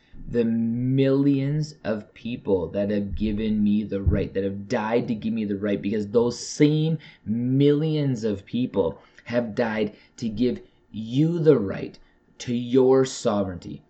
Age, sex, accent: 30-49, male, American